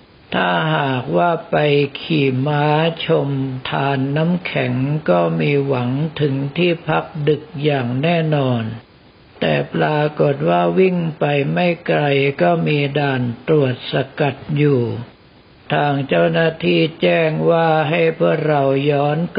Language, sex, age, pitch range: Thai, male, 60-79, 140-165 Hz